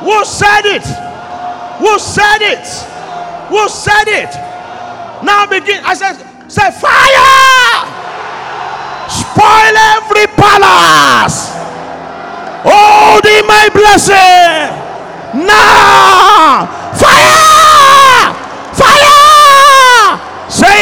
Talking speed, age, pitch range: 80 wpm, 50-69, 340-410 Hz